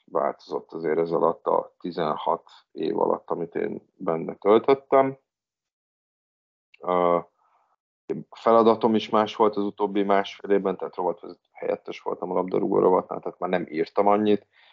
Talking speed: 130 wpm